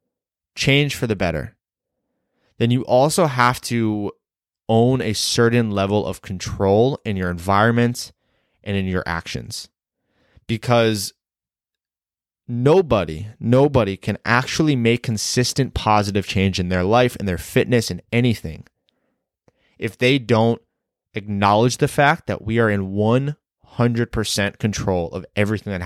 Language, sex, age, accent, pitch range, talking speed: English, male, 20-39, American, 95-120 Hz, 125 wpm